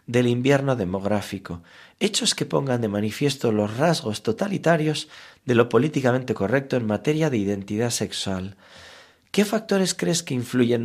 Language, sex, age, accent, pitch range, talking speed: Spanish, male, 40-59, Spanish, 110-150 Hz, 140 wpm